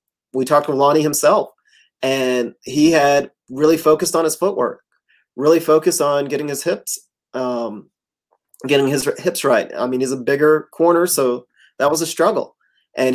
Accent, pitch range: American, 130-155 Hz